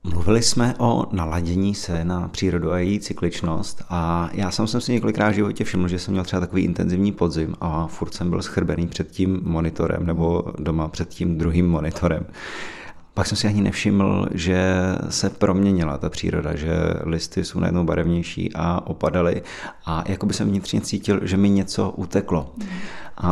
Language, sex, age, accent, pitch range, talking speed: Czech, male, 30-49, native, 85-100 Hz, 170 wpm